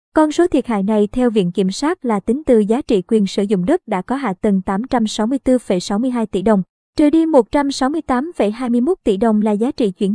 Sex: male